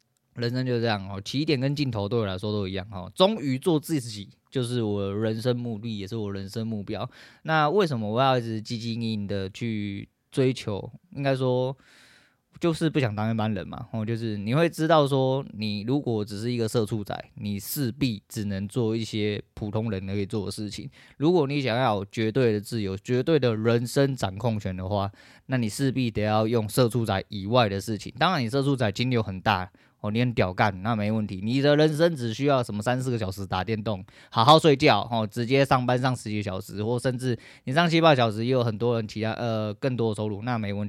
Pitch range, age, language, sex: 105-130 Hz, 20-39, Chinese, male